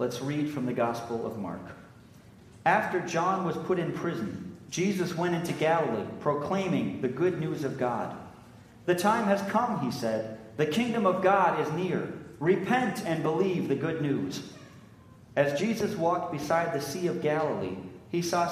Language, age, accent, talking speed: English, 40-59, American, 165 wpm